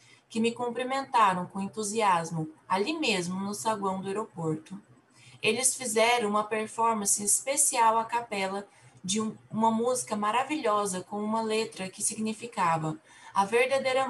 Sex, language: female, Portuguese